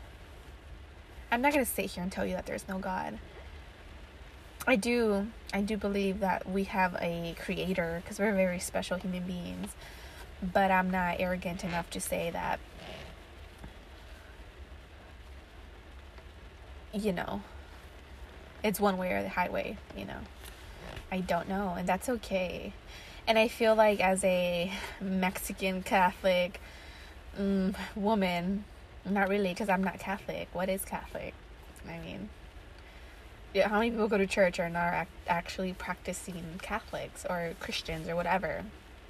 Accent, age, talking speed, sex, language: American, 20-39, 140 wpm, female, English